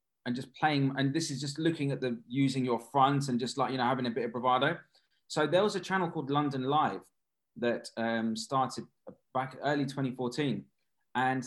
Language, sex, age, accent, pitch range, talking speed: English, male, 20-39, British, 120-145 Hz, 200 wpm